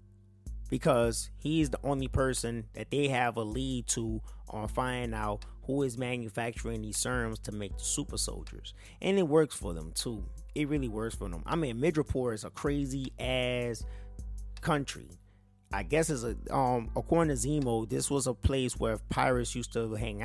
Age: 30-49